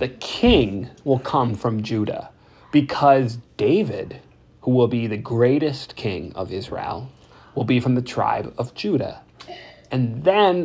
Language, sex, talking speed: English, male, 140 wpm